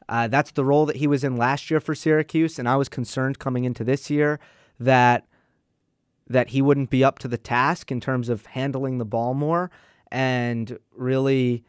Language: English